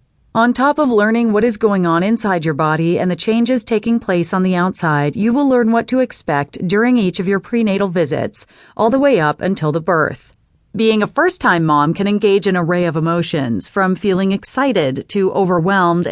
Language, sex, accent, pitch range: English, female, American, 150-205 Hz